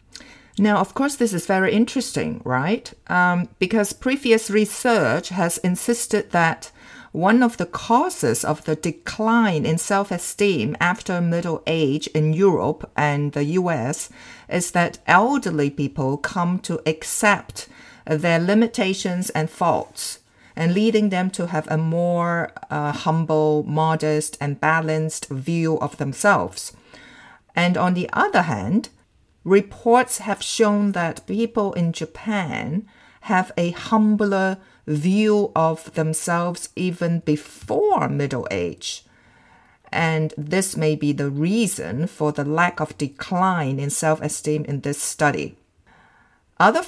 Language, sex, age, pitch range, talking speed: English, female, 50-69, 155-205 Hz, 125 wpm